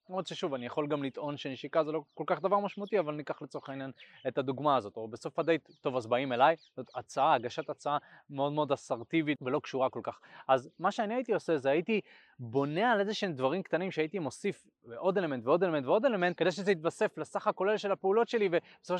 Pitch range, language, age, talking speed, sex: 140-185 Hz, Hebrew, 20-39, 215 wpm, male